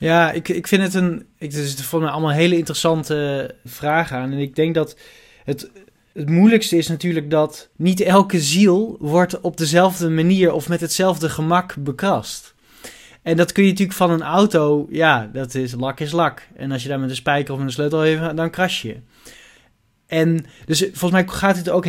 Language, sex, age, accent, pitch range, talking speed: Dutch, male, 20-39, Dutch, 145-180 Hz, 205 wpm